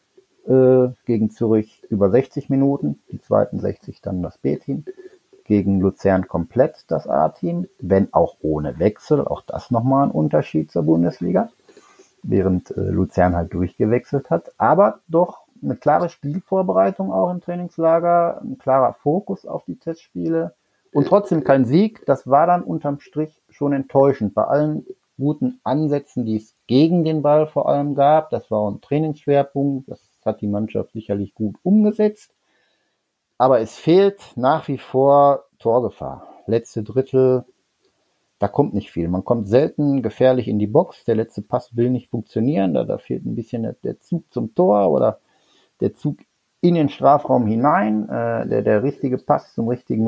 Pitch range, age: 110-155 Hz, 50-69